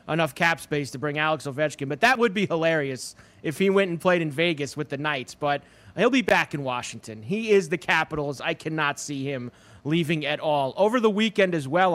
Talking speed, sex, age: 220 wpm, male, 30-49